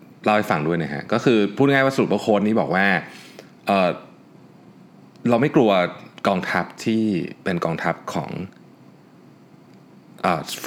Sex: male